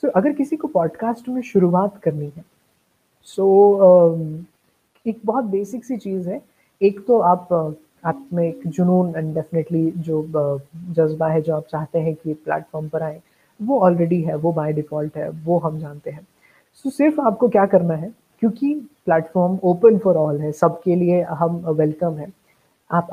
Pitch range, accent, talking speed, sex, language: 160-195 Hz, native, 165 wpm, female, Hindi